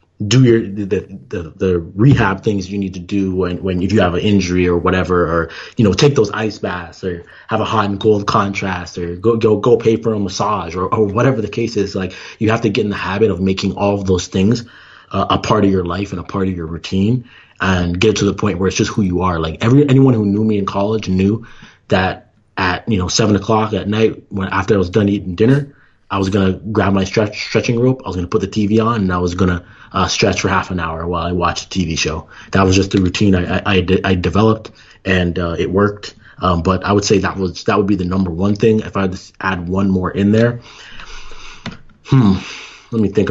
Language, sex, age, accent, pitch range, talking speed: English, male, 20-39, American, 90-105 Hz, 250 wpm